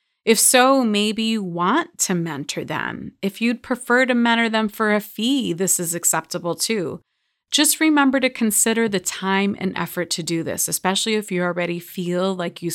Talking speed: 185 wpm